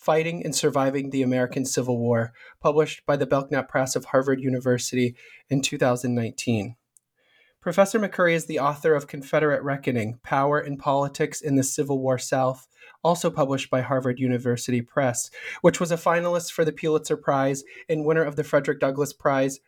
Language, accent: English, American